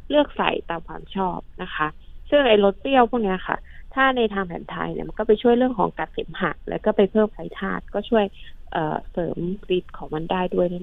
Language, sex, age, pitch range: Thai, female, 20-39, 180-225 Hz